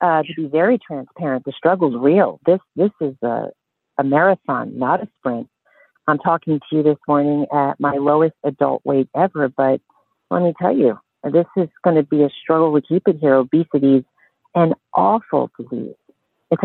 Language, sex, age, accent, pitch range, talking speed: English, female, 50-69, American, 145-170 Hz, 185 wpm